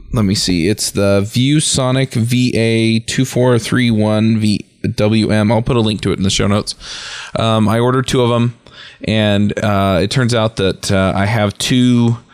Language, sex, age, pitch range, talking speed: English, male, 20-39, 95-115 Hz, 160 wpm